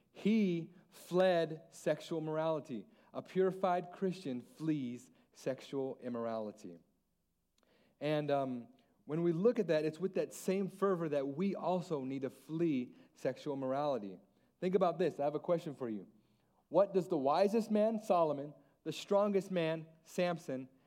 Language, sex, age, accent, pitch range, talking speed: English, male, 40-59, American, 115-165 Hz, 140 wpm